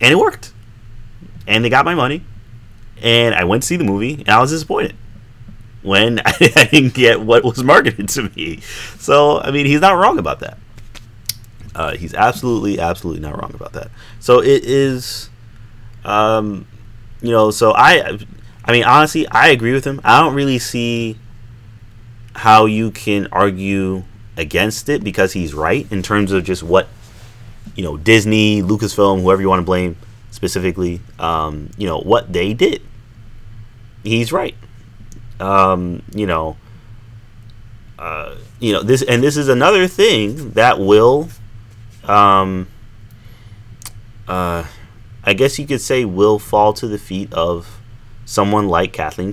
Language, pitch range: English, 105-120 Hz